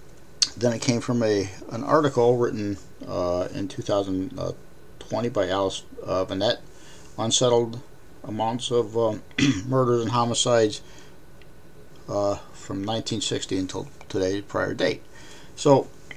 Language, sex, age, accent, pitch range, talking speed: English, male, 50-69, American, 105-140 Hz, 110 wpm